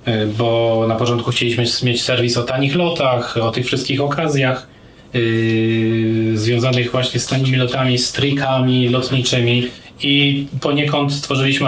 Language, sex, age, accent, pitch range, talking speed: Polish, male, 20-39, native, 115-130 Hz, 125 wpm